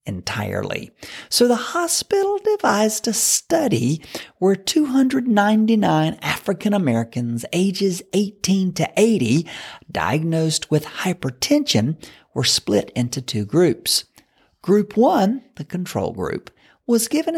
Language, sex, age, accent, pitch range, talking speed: English, male, 50-69, American, 145-210 Hz, 105 wpm